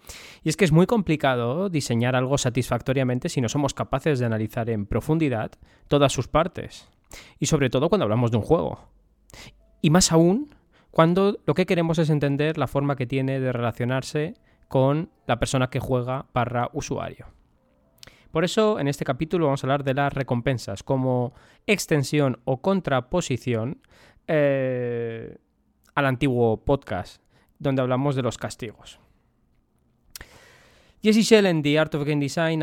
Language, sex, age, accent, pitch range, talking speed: Spanish, male, 20-39, Spanish, 125-155 Hz, 150 wpm